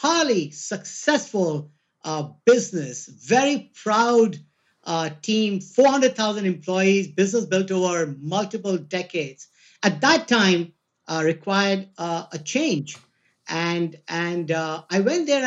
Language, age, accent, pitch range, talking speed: English, 50-69, Indian, 170-235 Hz, 120 wpm